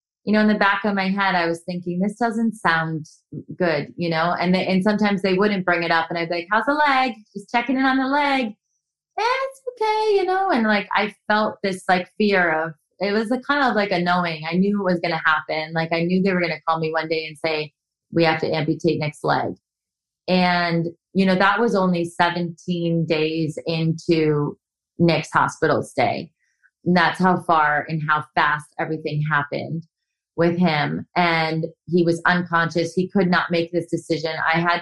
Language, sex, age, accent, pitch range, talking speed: English, female, 30-49, American, 160-185 Hz, 205 wpm